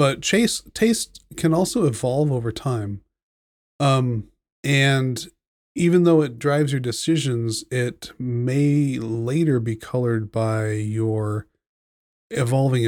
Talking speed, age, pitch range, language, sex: 105 wpm, 30-49, 110-135 Hz, English, male